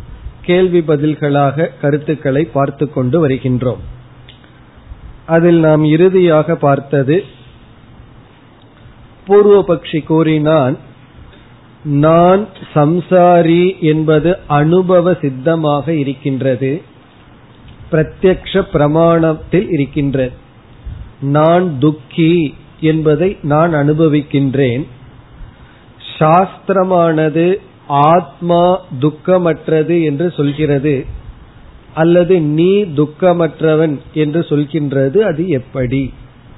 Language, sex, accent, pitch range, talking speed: Tamil, male, native, 135-170 Hz, 60 wpm